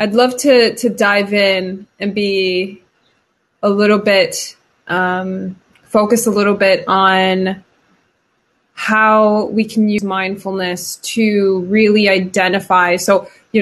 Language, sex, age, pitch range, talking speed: English, female, 20-39, 190-210 Hz, 120 wpm